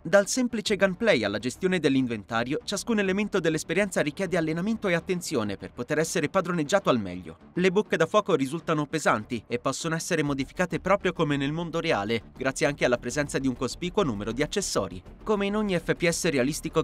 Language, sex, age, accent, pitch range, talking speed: Italian, male, 30-49, native, 130-190 Hz, 175 wpm